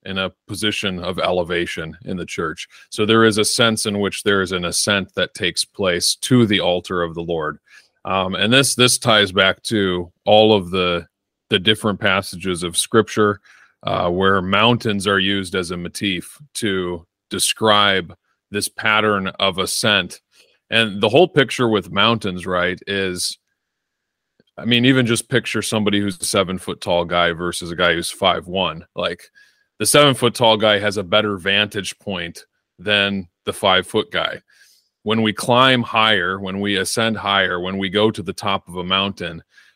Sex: male